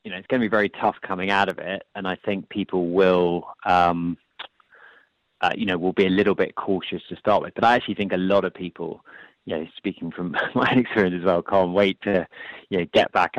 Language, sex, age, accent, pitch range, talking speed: English, male, 30-49, British, 90-100 Hz, 240 wpm